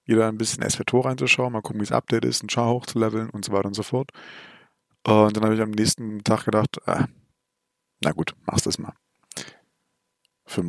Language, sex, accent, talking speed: German, male, German, 200 wpm